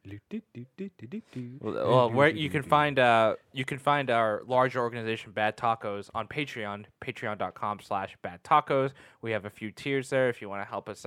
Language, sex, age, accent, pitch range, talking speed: English, male, 10-29, American, 105-130 Hz, 180 wpm